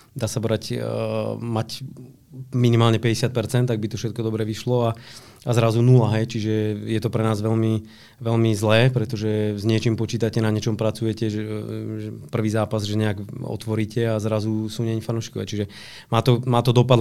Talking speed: 175 wpm